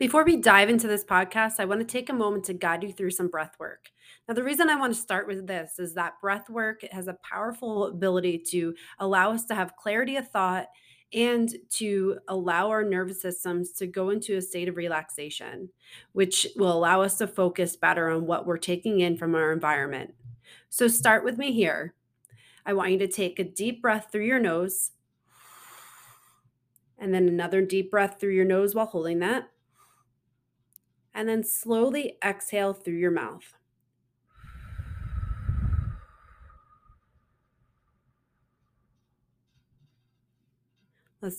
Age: 30-49